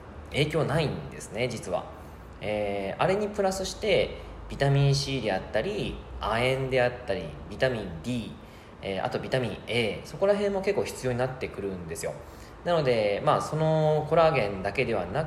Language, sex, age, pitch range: Japanese, male, 20-39, 105-155 Hz